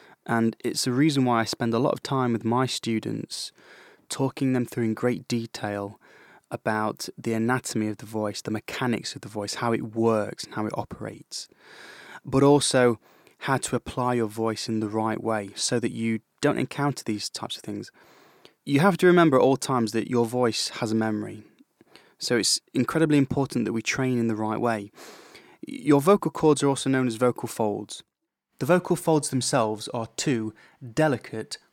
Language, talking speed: English, 185 wpm